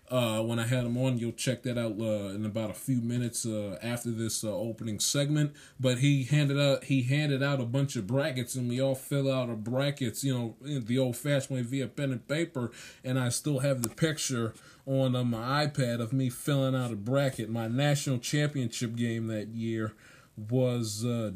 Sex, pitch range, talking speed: male, 115-140 Hz, 210 wpm